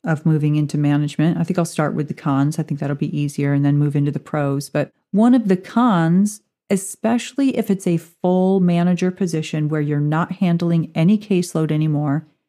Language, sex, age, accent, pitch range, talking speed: English, female, 40-59, American, 155-190 Hz, 195 wpm